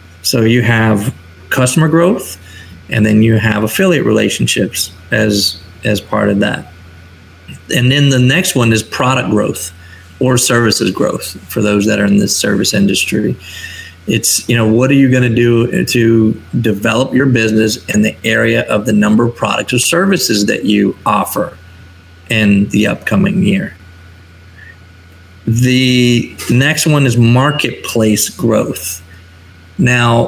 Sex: male